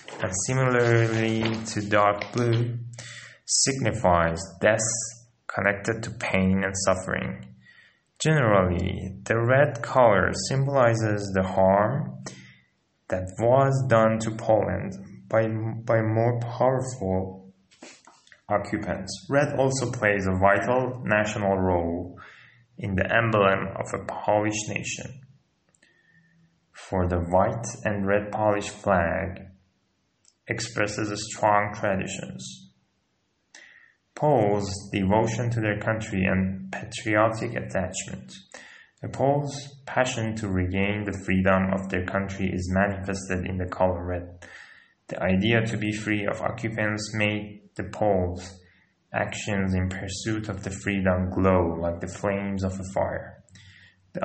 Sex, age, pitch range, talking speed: male, 20-39, 95-115 Hz, 110 wpm